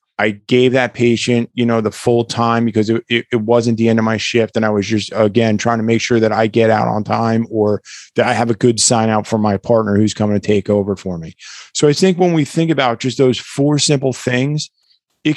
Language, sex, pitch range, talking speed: English, male, 110-125 Hz, 255 wpm